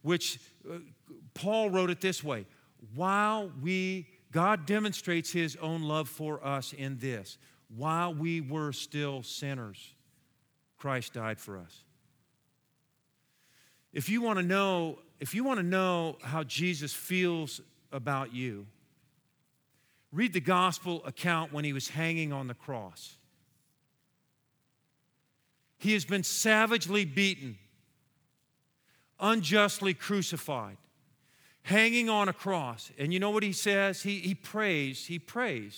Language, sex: English, male